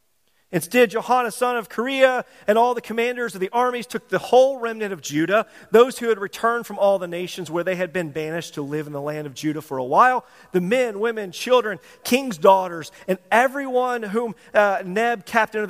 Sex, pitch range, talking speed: male, 190-250 Hz, 205 wpm